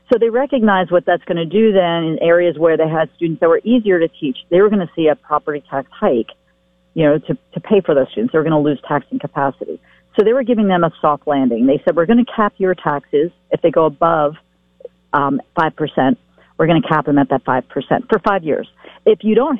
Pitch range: 150-215 Hz